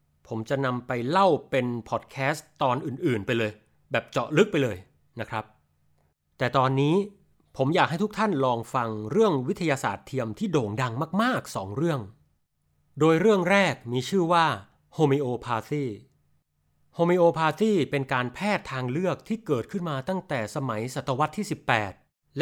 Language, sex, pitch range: Thai, male, 120-170 Hz